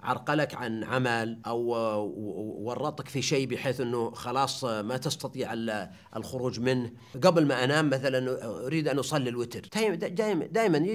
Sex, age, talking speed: male, 50-69, 130 wpm